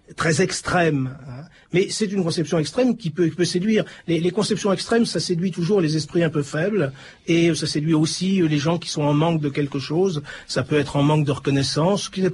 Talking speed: 230 wpm